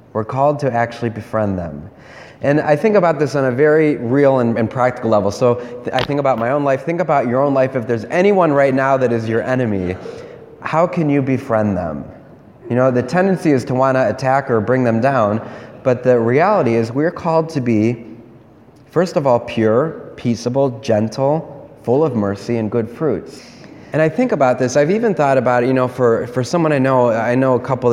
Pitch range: 110-135 Hz